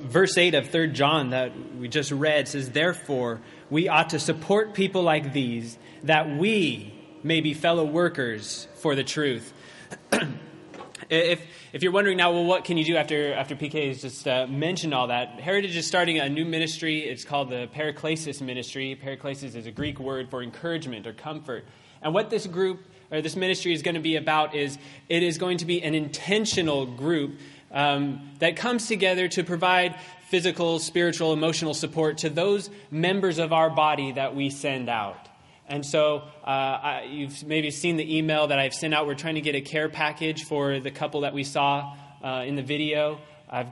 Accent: American